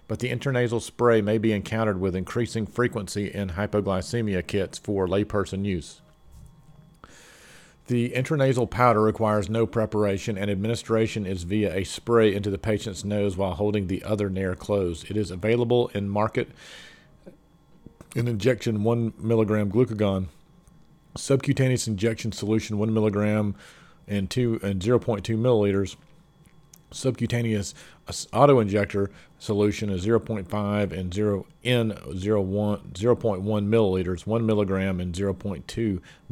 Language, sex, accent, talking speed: English, male, American, 120 wpm